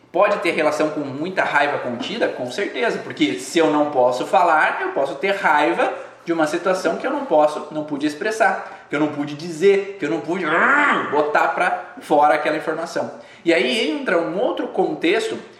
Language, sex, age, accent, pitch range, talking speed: Portuguese, male, 20-39, Brazilian, 155-200 Hz, 190 wpm